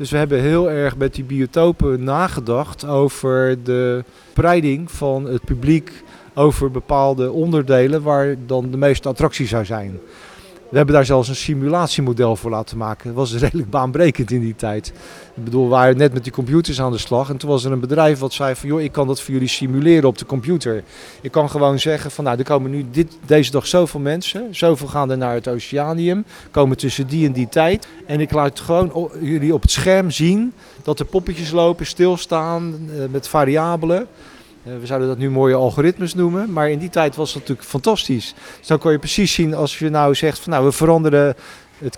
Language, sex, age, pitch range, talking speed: Dutch, male, 40-59, 130-160 Hz, 205 wpm